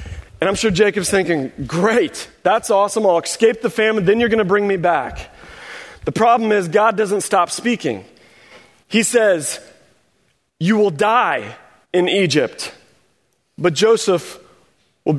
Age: 30-49